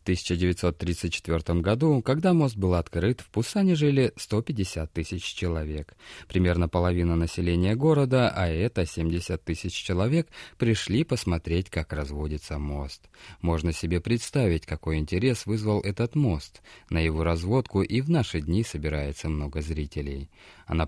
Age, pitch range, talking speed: 20-39, 80-110 Hz, 130 wpm